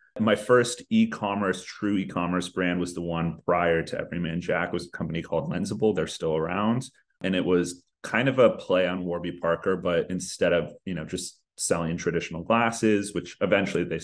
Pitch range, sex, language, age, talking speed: 85-95 Hz, male, English, 30-49, 185 wpm